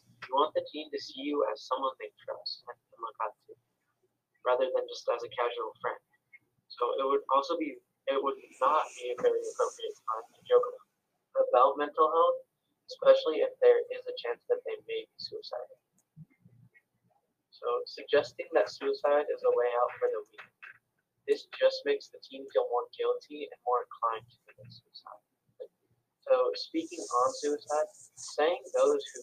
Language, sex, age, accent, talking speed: English, male, 20-39, American, 160 wpm